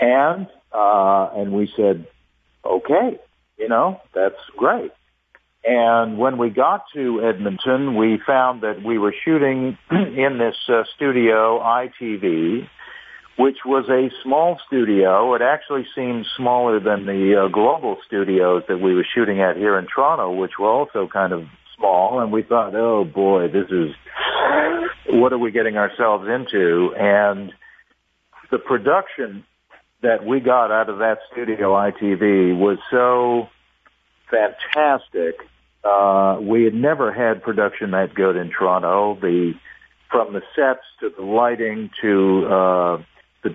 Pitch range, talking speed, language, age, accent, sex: 95-120 Hz, 140 wpm, English, 50-69, American, male